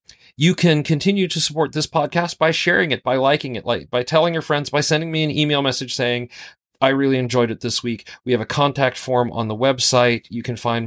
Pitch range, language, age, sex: 110-140 Hz, English, 40-59, male